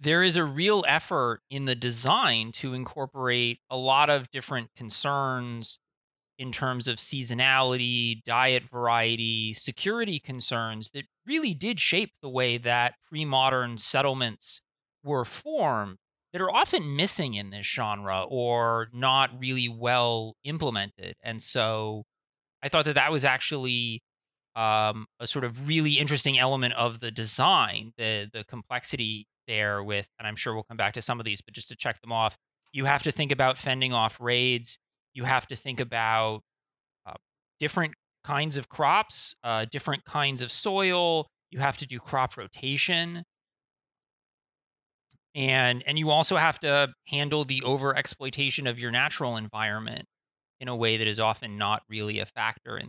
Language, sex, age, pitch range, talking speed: English, male, 30-49, 115-140 Hz, 155 wpm